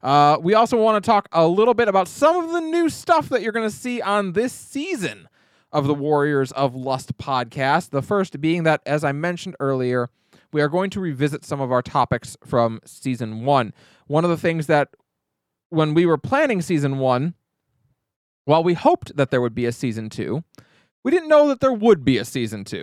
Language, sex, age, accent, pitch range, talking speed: English, male, 20-39, American, 125-180 Hz, 210 wpm